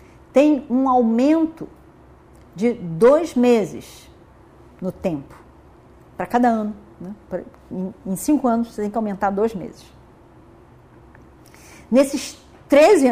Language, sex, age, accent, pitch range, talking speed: Portuguese, female, 40-59, Brazilian, 190-280 Hz, 105 wpm